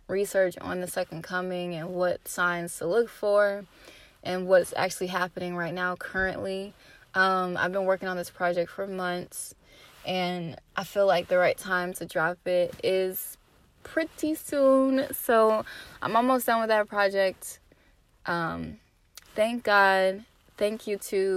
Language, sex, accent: English, female, American